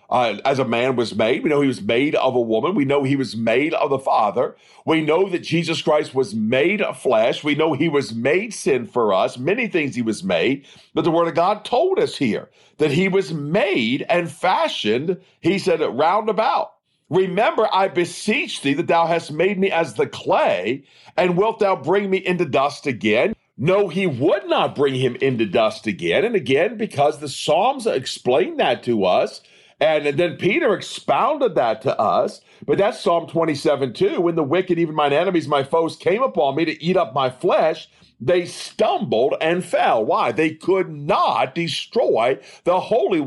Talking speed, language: 195 wpm, English